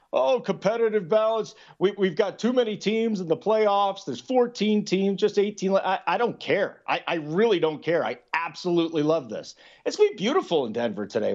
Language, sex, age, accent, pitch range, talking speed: English, male, 40-59, American, 145-200 Hz, 200 wpm